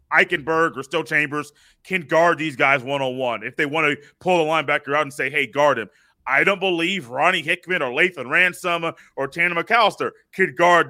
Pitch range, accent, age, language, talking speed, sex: 155-190 Hz, American, 30-49, English, 195 wpm, male